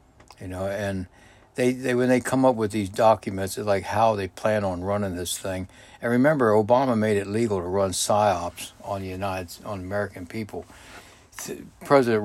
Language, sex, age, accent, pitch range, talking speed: English, male, 60-79, American, 95-110 Hz, 180 wpm